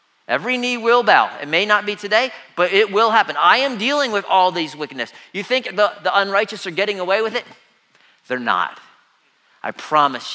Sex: male